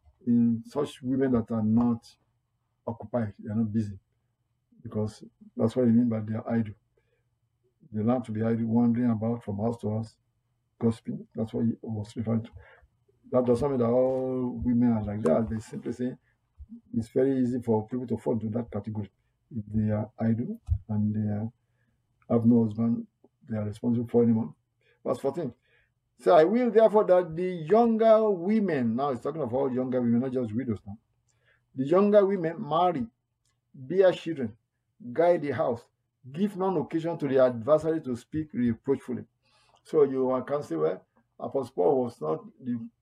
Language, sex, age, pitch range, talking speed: English, male, 50-69, 115-130 Hz, 170 wpm